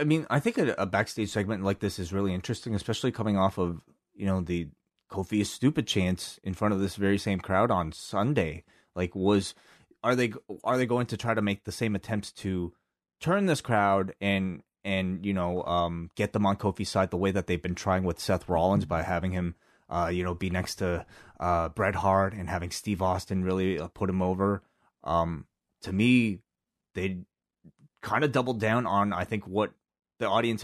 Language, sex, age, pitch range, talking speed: English, male, 30-49, 90-110 Hz, 205 wpm